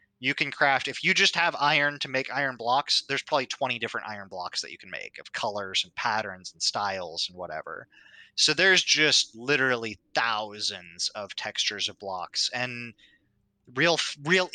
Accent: American